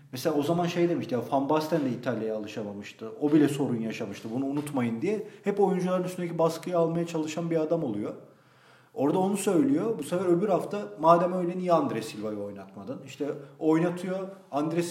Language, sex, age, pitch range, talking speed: Turkish, male, 40-59, 140-180 Hz, 175 wpm